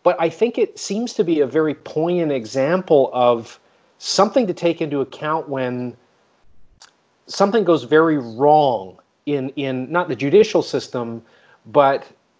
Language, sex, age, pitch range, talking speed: English, male, 40-59, 125-165 Hz, 140 wpm